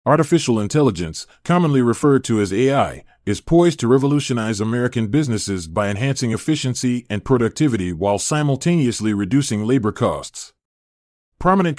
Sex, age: male, 30-49